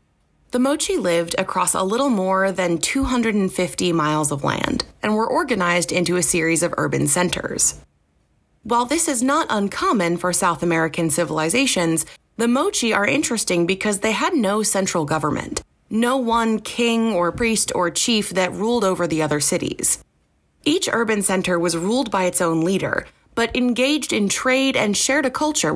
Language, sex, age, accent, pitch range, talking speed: English, female, 20-39, American, 170-235 Hz, 165 wpm